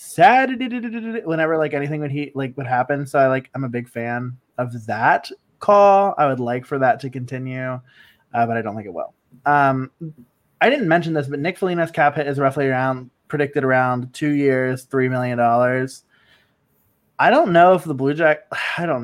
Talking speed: 200 wpm